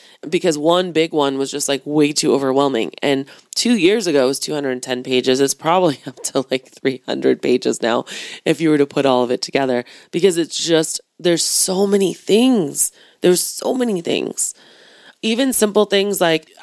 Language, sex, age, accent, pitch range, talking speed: English, female, 20-39, American, 145-180 Hz, 180 wpm